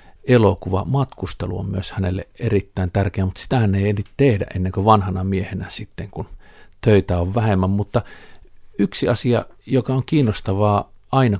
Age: 50-69